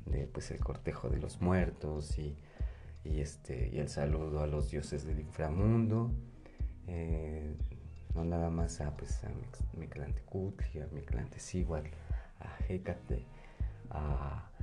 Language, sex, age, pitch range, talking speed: Spanish, male, 30-49, 75-95 Hz, 130 wpm